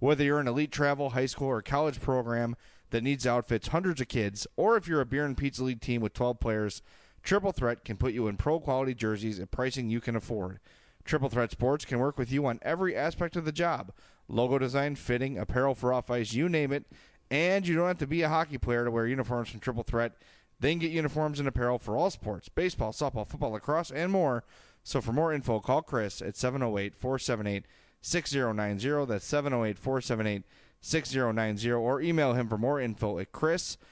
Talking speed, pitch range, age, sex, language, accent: 220 wpm, 115-140 Hz, 30-49, male, English, American